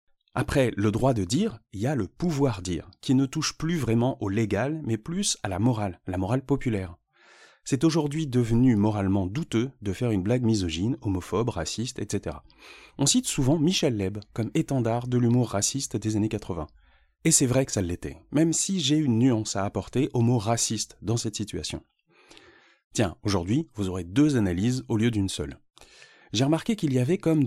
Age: 30-49